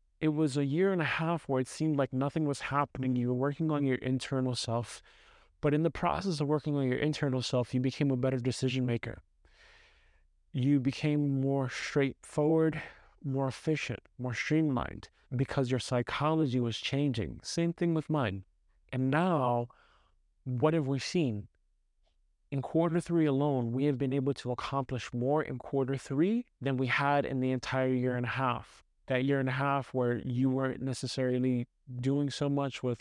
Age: 30-49